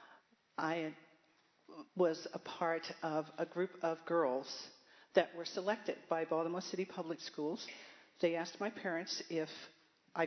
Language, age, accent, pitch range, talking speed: English, 40-59, American, 155-185 Hz, 135 wpm